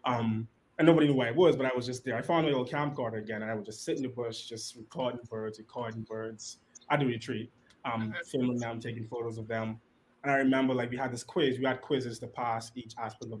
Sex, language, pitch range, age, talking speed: male, English, 115-135 Hz, 20-39, 255 wpm